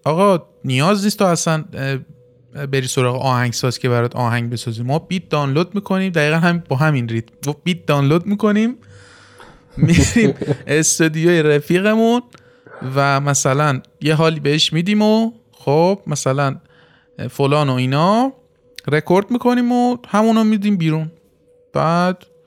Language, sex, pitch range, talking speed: Persian, male, 135-190 Hz, 125 wpm